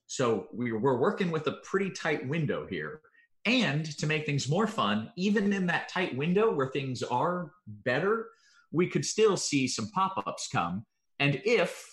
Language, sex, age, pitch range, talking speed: English, male, 30-49, 125-195 Hz, 165 wpm